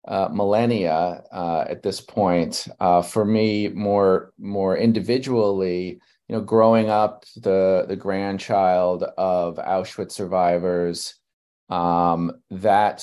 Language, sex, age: English, male, 30-49